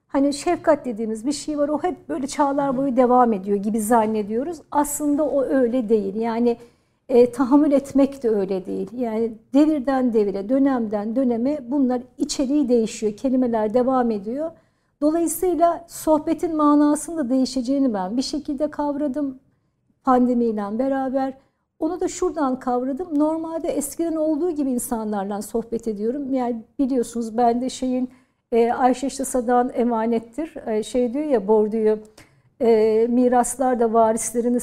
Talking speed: 130 wpm